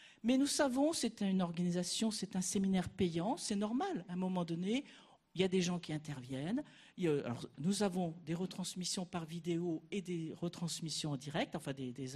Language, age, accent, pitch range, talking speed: French, 50-69, French, 170-230 Hz, 190 wpm